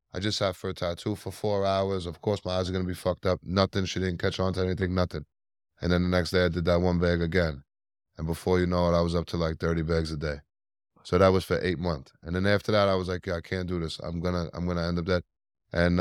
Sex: male